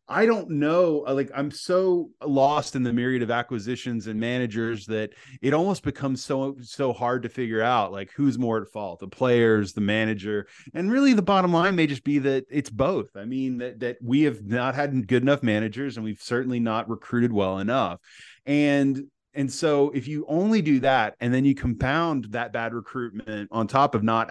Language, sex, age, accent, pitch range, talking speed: English, male, 30-49, American, 115-145 Hz, 200 wpm